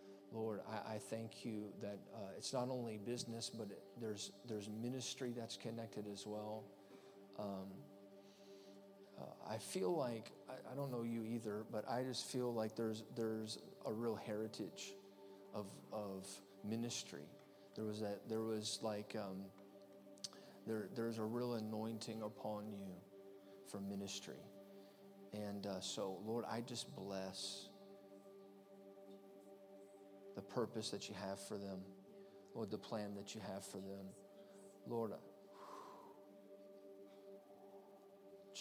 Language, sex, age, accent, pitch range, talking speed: English, male, 40-59, American, 100-110 Hz, 130 wpm